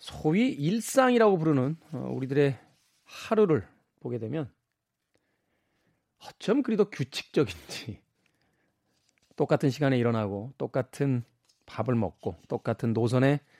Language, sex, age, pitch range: Korean, male, 40-59, 120-170 Hz